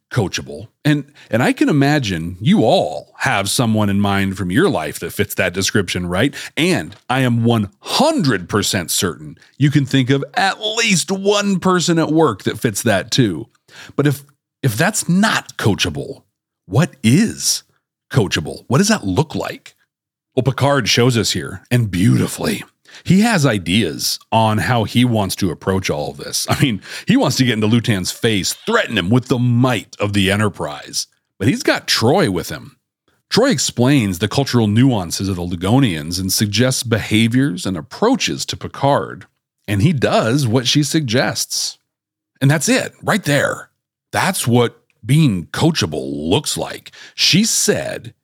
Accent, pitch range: American, 105-145 Hz